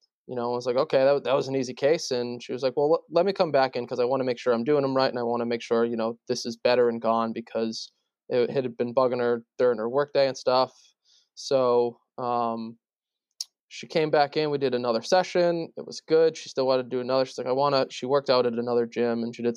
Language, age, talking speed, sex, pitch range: English, 20-39, 275 wpm, male, 115-135 Hz